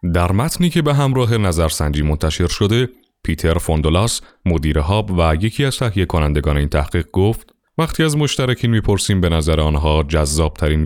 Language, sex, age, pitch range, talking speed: Persian, male, 30-49, 80-110 Hz, 155 wpm